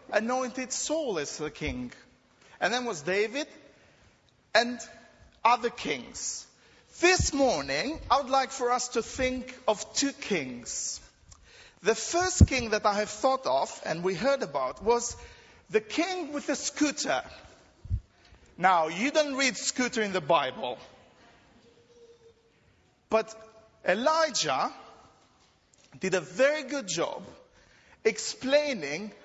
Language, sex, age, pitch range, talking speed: English, male, 40-59, 215-290 Hz, 120 wpm